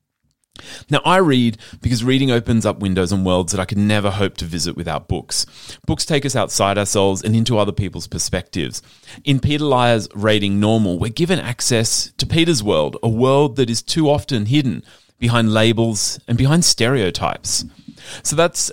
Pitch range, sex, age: 105-140 Hz, male, 30-49